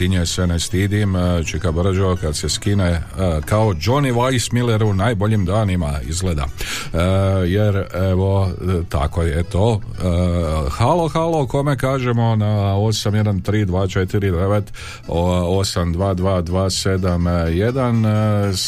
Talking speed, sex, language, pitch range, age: 80 wpm, male, Croatian, 85-110 Hz, 50-69